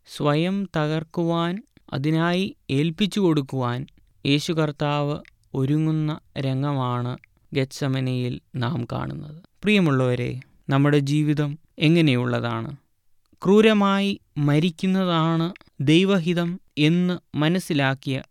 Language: Malayalam